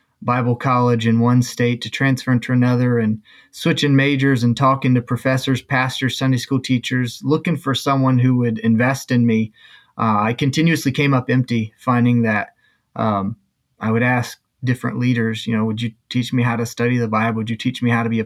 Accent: American